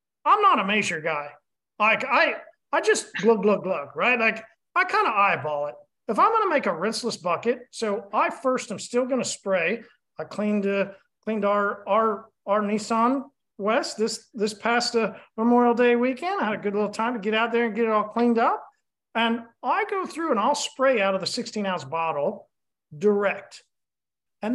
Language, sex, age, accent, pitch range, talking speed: English, male, 40-59, American, 195-250 Hz, 195 wpm